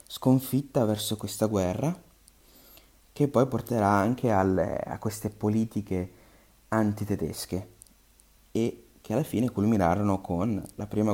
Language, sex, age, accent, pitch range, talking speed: Italian, male, 30-49, native, 100-125 Hz, 115 wpm